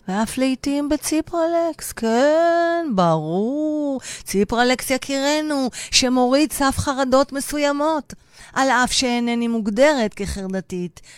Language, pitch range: Hebrew, 150-230 Hz